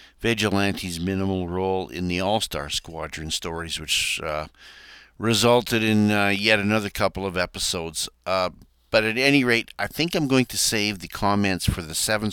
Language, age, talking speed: English, 50-69, 165 wpm